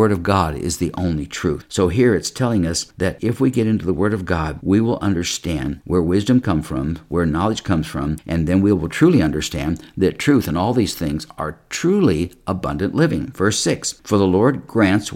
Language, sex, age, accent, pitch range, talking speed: English, male, 60-79, American, 85-110 Hz, 215 wpm